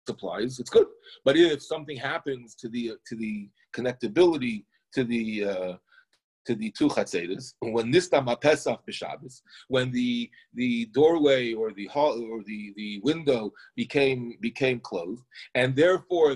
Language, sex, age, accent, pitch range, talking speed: English, male, 40-59, American, 125-170 Hz, 130 wpm